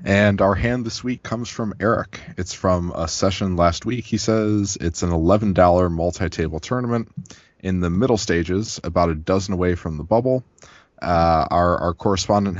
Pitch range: 85-115 Hz